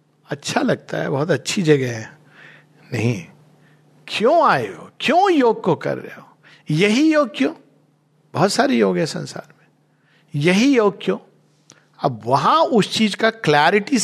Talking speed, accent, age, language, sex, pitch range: 150 wpm, native, 50-69, Hindi, male, 140-180 Hz